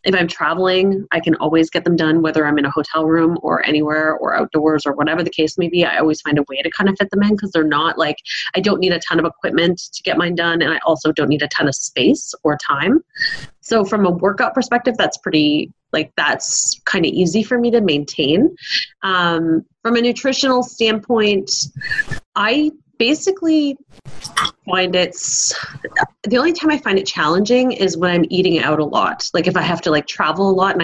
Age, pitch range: 30-49, 155-210 Hz